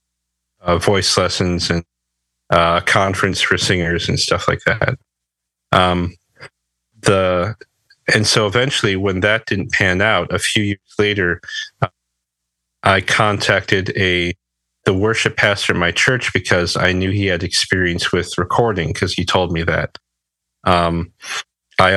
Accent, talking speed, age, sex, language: American, 140 wpm, 40-59, male, English